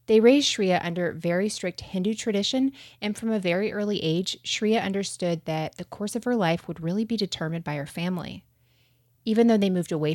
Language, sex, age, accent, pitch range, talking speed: English, female, 30-49, American, 160-210 Hz, 200 wpm